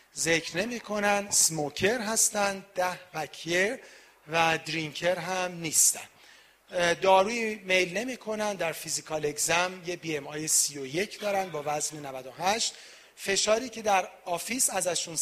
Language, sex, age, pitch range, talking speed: Persian, male, 40-59, 155-205 Hz, 125 wpm